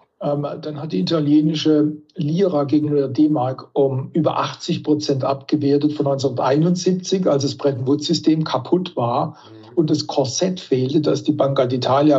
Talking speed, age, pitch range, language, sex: 145 wpm, 60-79, 140-165 Hz, German, male